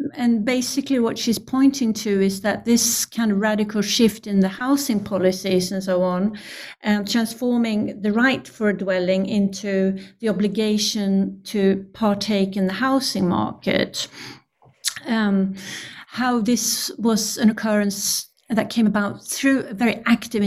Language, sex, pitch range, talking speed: English, female, 190-225 Hz, 145 wpm